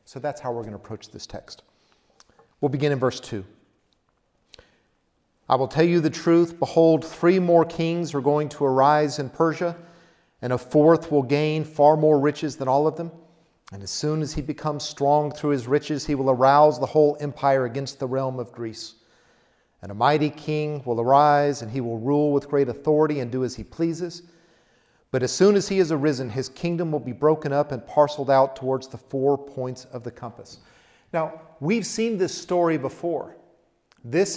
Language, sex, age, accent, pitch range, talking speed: English, male, 40-59, American, 130-155 Hz, 195 wpm